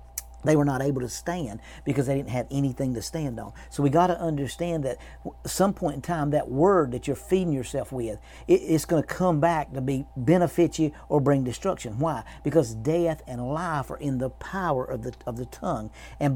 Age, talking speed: 50-69, 215 wpm